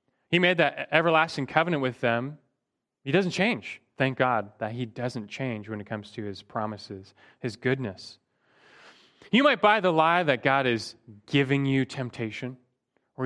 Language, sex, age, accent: English, male, 30-49, American